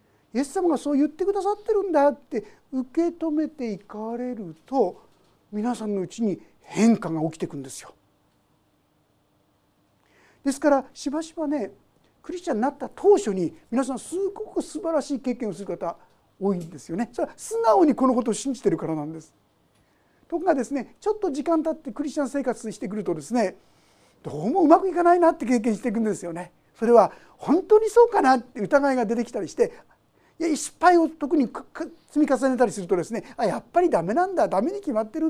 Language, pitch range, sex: Japanese, 225-355 Hz, male